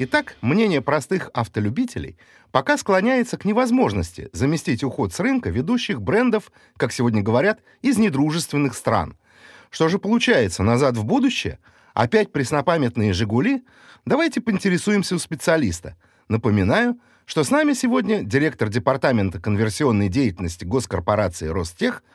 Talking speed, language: 120 wpm, Russian